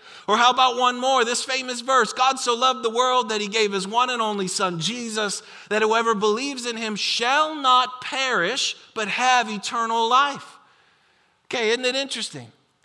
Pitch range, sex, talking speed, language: 175-230 Hz, male, 180 wpm, English